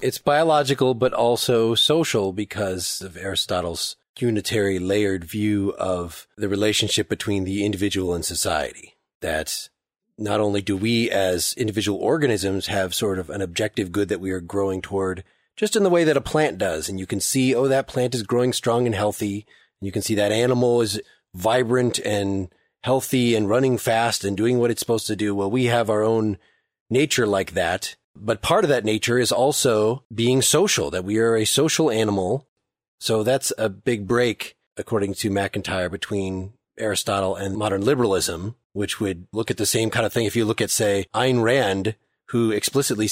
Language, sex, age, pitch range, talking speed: English, male, 30-49, 100-120 Hz, 180 wpm